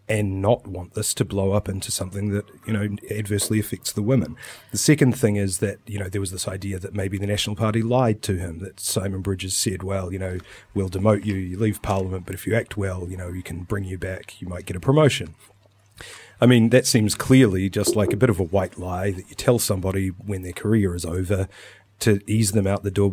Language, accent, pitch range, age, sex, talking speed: English, Australian, 95-115 Hz, 30-49, male, 240 wpm